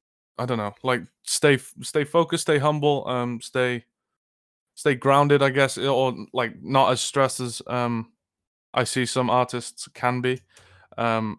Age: 20-39